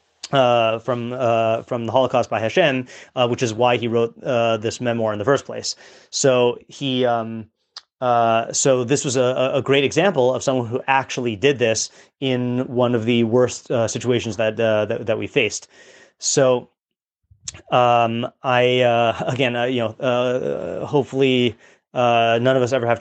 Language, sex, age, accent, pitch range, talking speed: English, male, 30-49, American, 120-135 Hz, 175 wpm